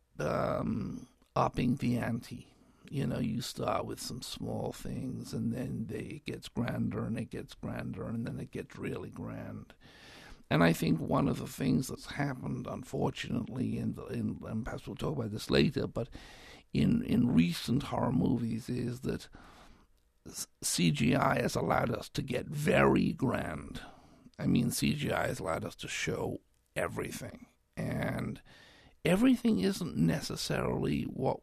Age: 60-79